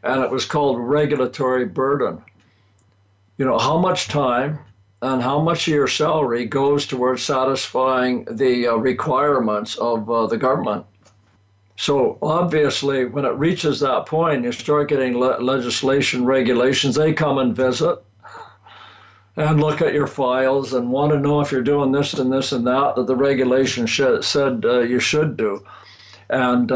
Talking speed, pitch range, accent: 155 wpm, 120-145 Hz, American